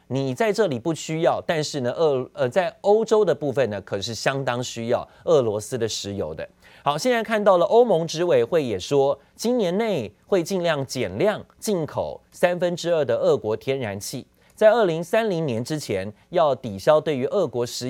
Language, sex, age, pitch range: Chinese, male, 30-49, 125-190 Hz